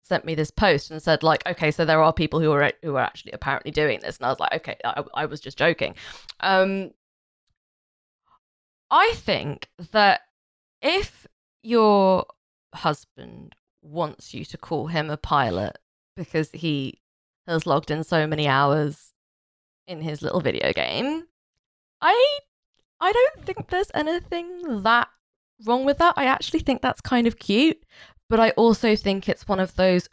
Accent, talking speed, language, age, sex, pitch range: British, 165 wpm, English, 20-39, female, 165-250 Hz